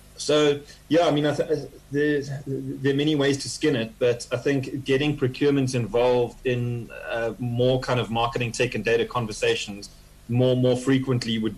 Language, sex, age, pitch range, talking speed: English, male, 20-39, 115-135 Hz, 175 wpm